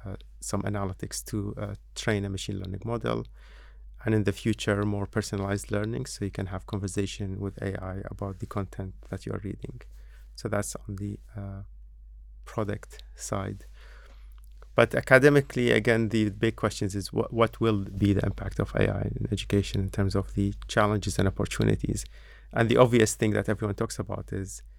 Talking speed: 170 wpm